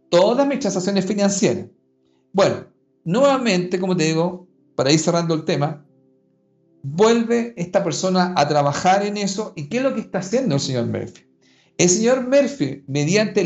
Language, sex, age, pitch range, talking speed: Spanish, male, 50-69, 140-200 Hz, 155 wpm